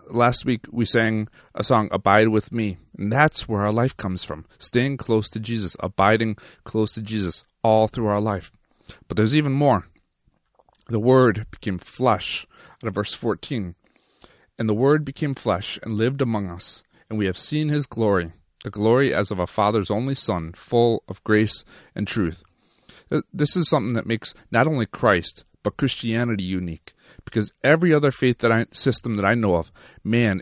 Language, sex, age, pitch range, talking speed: English, male, 30-49, 100-125 Hz, 180 wpm